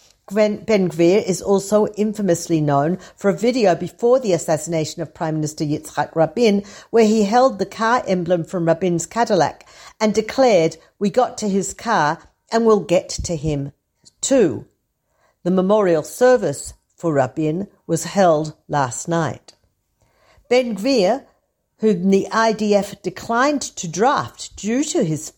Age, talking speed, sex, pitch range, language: 50-69, 140 wpm, female, 165-215 Hz, Hebrew